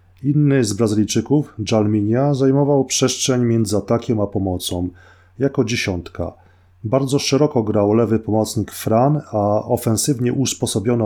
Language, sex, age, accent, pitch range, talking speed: Polish, male, 30-49, native, 100-130 Hz, 115 wpm